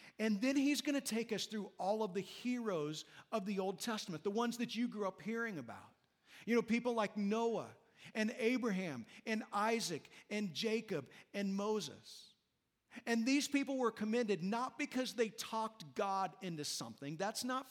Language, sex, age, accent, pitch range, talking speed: English, male, 50-69, American, 185-240 Hz, 175 wpm